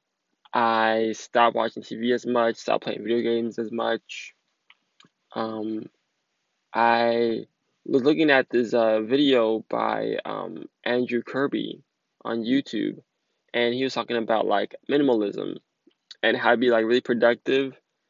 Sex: male